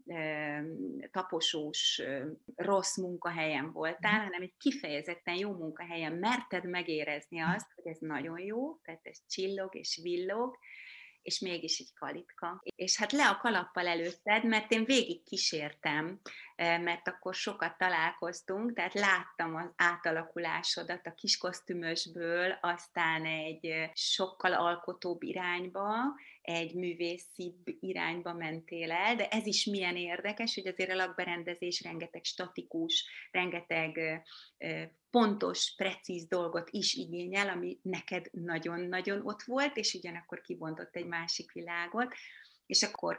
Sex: female